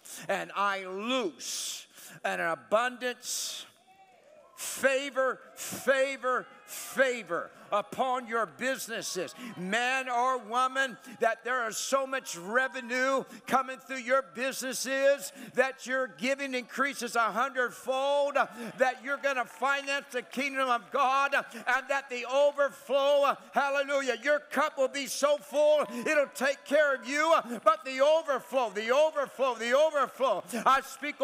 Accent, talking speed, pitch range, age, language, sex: American, 125 wpm, 255-305 Hz, 60-79, English, male